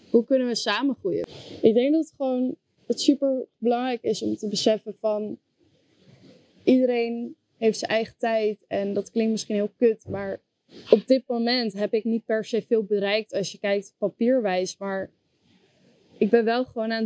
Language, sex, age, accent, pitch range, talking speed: Dutch, female, 20-39, Dutch, 210-240 Hz, 175 wpm